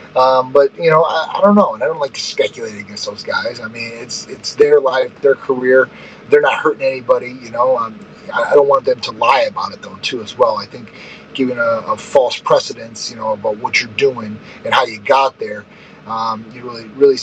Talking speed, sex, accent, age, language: 235 wpm, male, American, 30-49, English